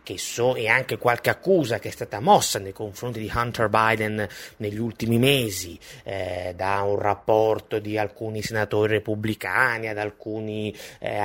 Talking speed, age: 145 wpm, 30-49